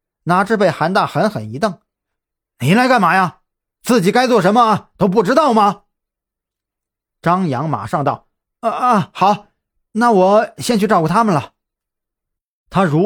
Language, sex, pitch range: Chinese, male, 140-215 Hz